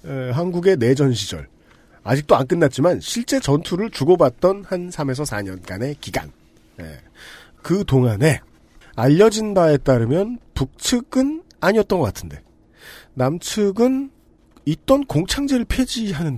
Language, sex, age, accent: Korean, male, 40-59, native